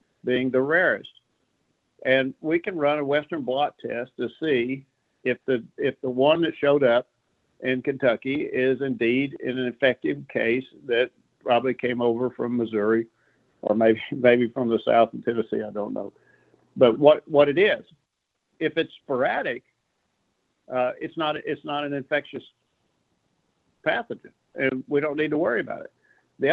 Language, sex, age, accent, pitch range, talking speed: English, male, 60-79, American, 125-150 Hz, 160 wpm